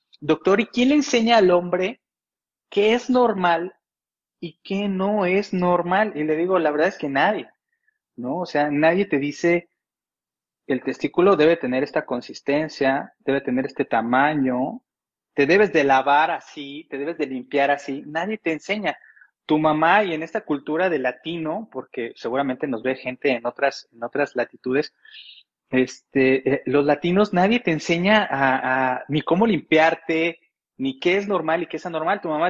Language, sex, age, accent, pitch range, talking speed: Spanish, male, 30-49, Mexican, 135-180 Hz, 170 wpm